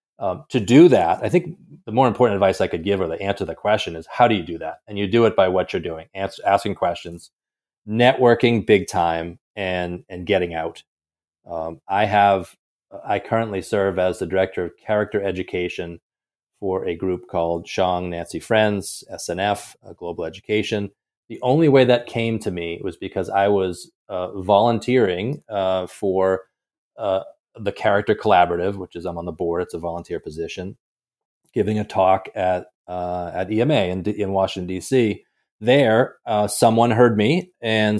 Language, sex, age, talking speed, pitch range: English, male, 30-49, 175 wpm, 90-110 Hz